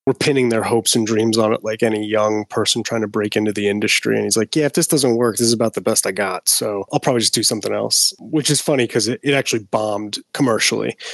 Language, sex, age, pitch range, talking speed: English, male, 30-49, 110-130 Hz, 265 wpm